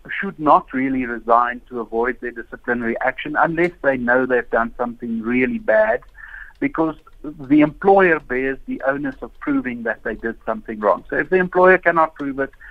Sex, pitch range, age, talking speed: male, 120-170 Hz, 60-79, 175 wpm